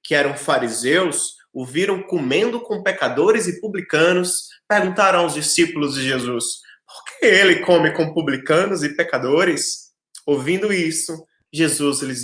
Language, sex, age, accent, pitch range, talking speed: Portuguese, male, 20-39, Brazilian, 150-190 Hz, 130 wpm